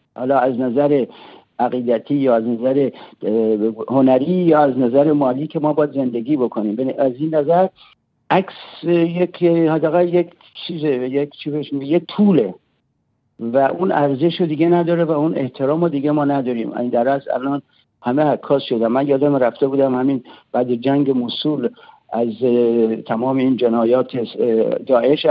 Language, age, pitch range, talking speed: Persian, 60-79, 125-155 Hz, 140 wpm